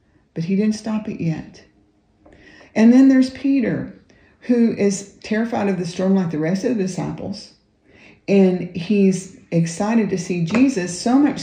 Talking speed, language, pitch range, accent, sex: 160 wpm, English, 175-220 Hz, American, female